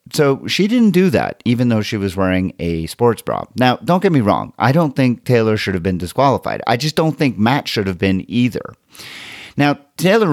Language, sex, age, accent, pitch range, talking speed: English, male, 40-59, American, 100-145 Hz, 215 wpm